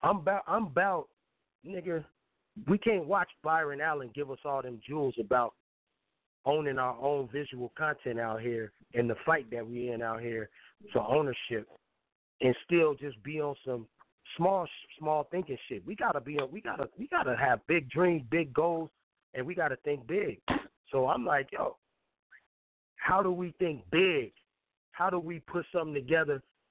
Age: 30-49